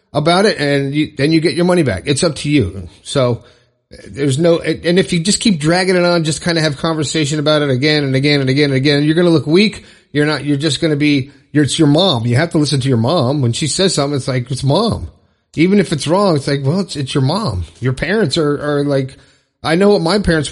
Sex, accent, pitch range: male, American, 125-160 Hz